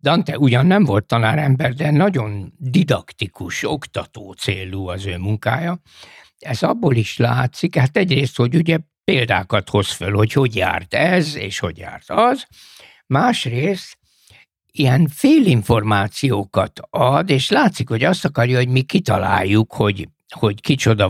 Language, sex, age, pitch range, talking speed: Hungarian, male, 60-79, 105-165 Hz, 135 wpm